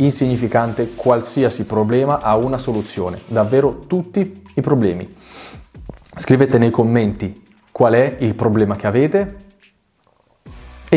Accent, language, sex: native, Italian, male